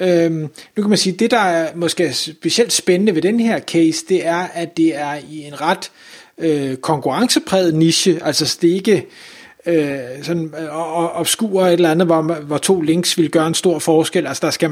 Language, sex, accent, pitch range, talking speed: Danish, male, native, 160-195 Hz, 205 wpm